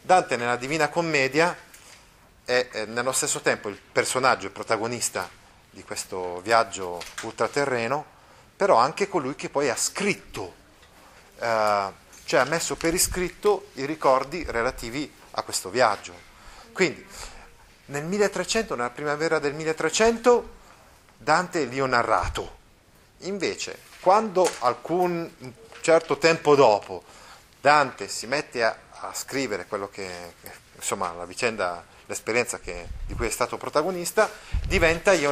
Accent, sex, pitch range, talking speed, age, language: native, male, 115-175 Hz, 125 wpm, 30-49, Italian